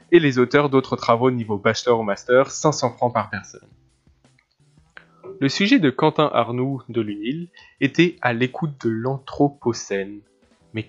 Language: French